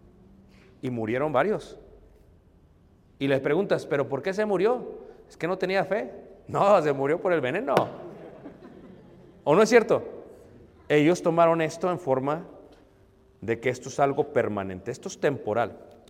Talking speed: 150 wpm